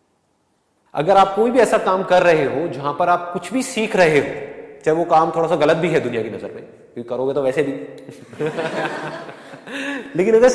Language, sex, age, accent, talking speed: Hindi, male, 30-49, native, 205 wpm